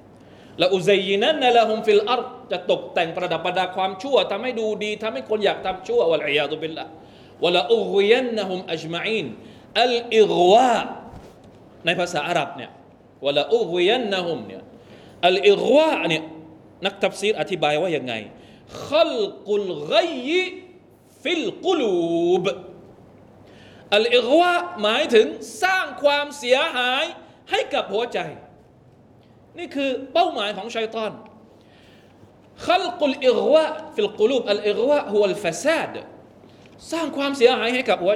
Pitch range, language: 180-285 Hz, Thai